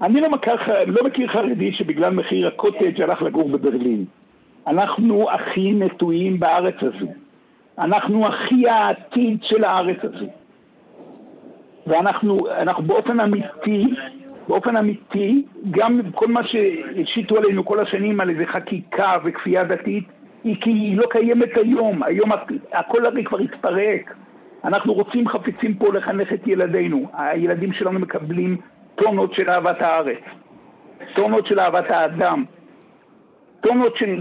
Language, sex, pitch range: Hebrew, male, 190-240 Hz